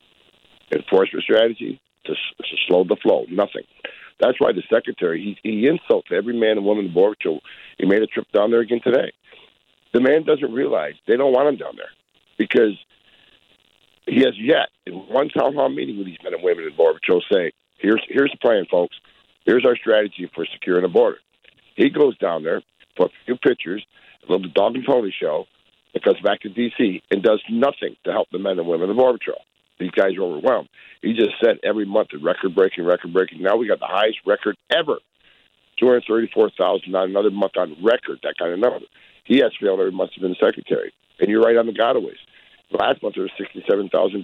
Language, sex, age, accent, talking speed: English, male, 60-79, American, 210 wpm